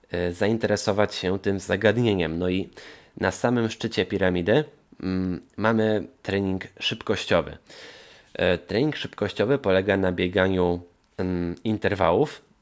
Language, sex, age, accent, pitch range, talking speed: Polish, male, 20-39, native, 90-105 Hz, 90 wpm